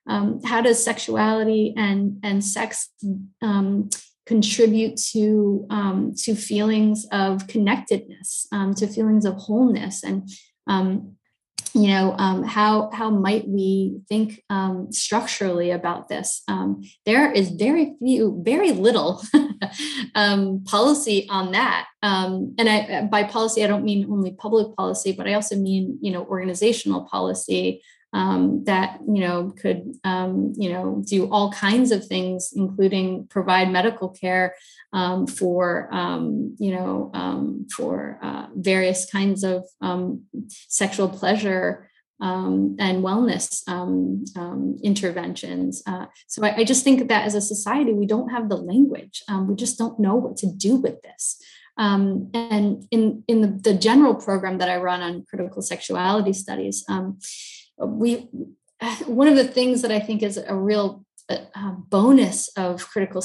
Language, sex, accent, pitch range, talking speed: English, female, American, 190-225 Hz, 150 wpm